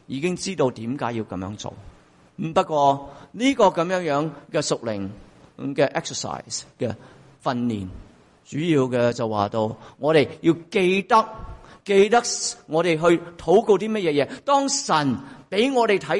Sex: male